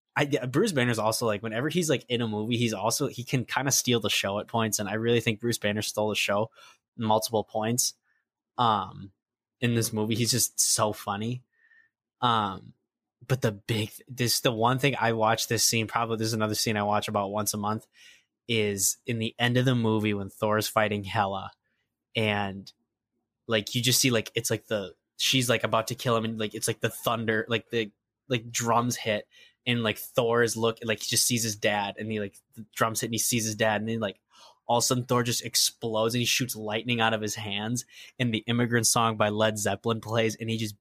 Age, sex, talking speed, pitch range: 10-29, male, 220 wpm, 110-120 Hz